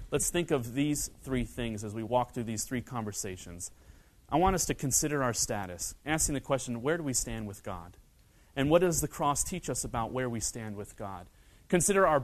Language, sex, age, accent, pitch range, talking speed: English, male, 30-49, American, 110-160 Hz, 215 wpm